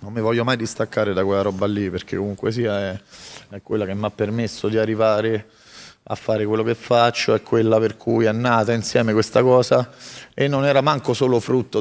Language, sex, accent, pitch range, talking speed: Italian, male, native, 100-115 Hz, 210 wpm